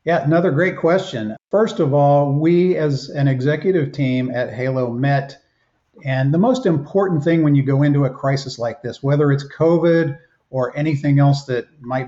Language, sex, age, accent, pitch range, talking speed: English, male, 50-69, American, 130-160 Hz, 180 wpm